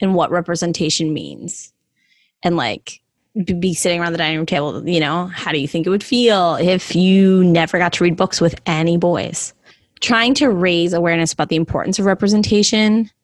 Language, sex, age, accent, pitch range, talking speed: English, female, 20-39, American, 165-200 Hz, 185 wpm